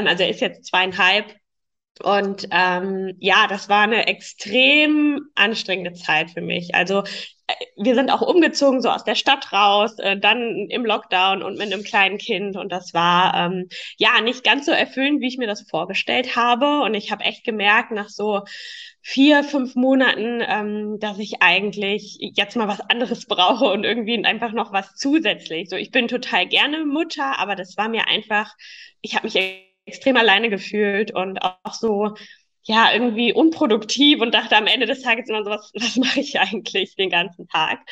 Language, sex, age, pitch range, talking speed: German, female, 10-29, 200-250 Hz, 180 wpm